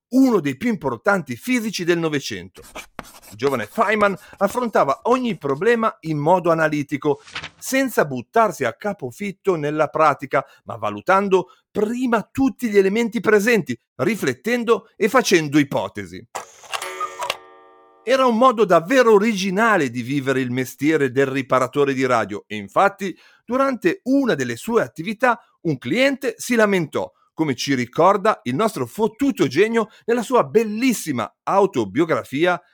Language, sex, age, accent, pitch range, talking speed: Italian, male, 50-69, native, 140-230 Hz, 125 wpm